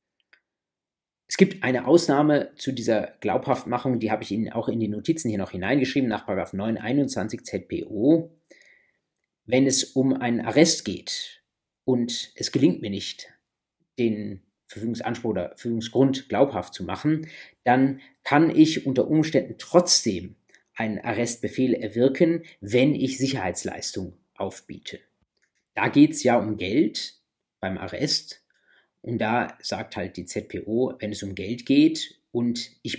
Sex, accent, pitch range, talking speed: male, German, 105-135 Hz, 135 wpm